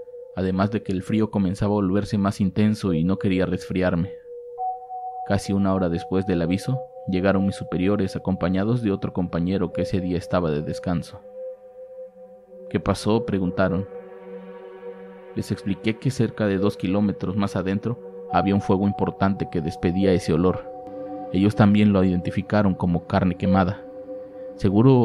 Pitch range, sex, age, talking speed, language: 95-120 Hz, male, 30-49, 145 wpm, Spanish